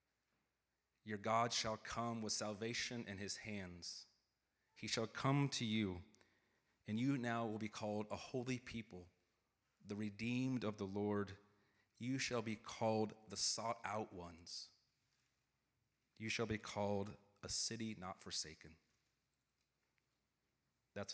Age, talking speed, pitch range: 30-49, 130 wpm, 95-115 Hz